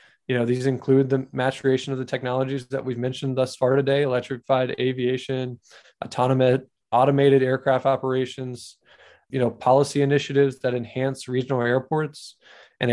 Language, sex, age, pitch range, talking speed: English, male, 20-39, 125-135 Hz, 140 wpm